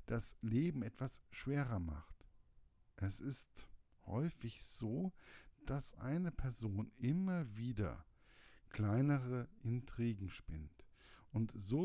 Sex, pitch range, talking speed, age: male, 95-120 Hz, 95 wpm, 50-69